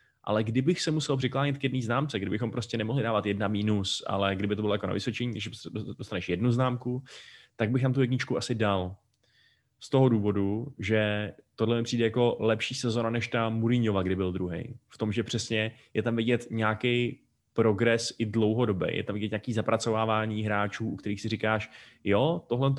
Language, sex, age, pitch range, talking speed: Czech, male, 20-39, 105-120 Hz, 185 wpm